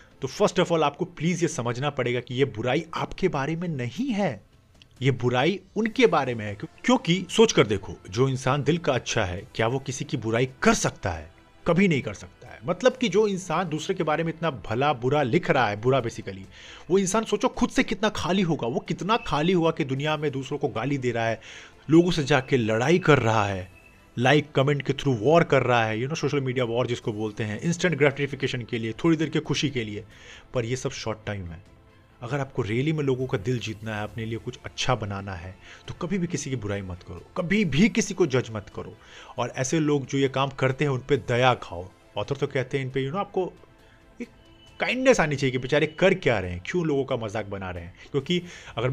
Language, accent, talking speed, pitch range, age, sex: Hindi, native, 235 wpm, 110-160 Hz, 30-49, male